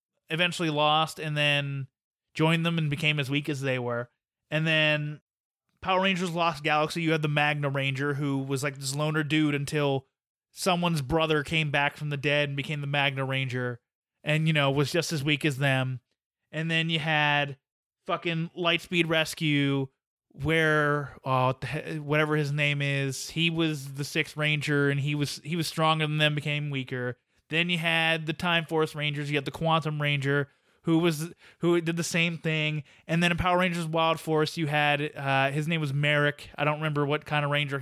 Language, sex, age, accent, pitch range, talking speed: English, male, 20-39, American, 145-165 Hz, 190 wpm